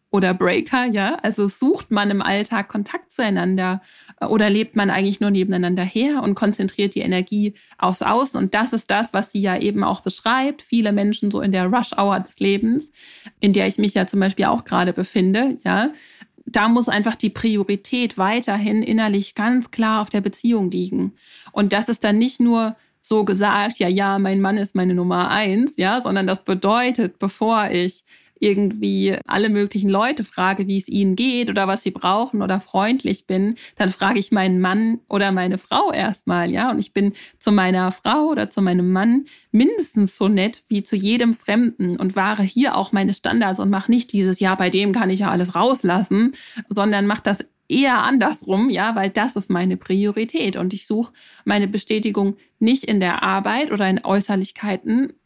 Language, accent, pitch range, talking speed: German, German, 195-230 Hz, 185 wpm